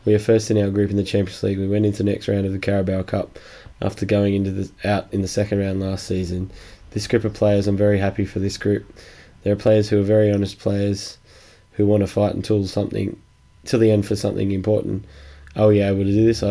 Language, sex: English, male